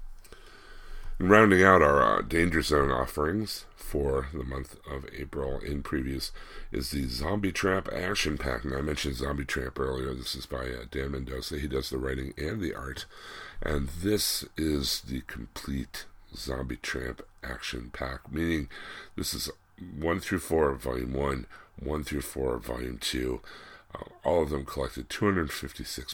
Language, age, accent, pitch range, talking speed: English, 60-79, American, 65-80 Hz, 160 wpm